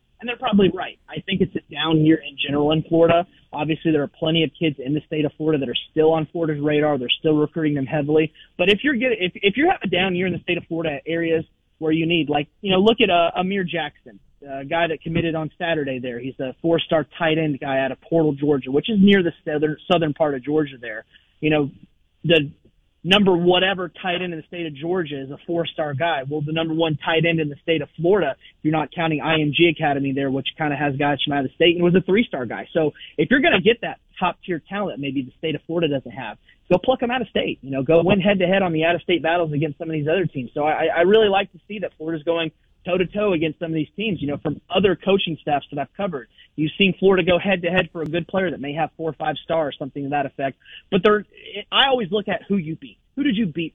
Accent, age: American, 30-49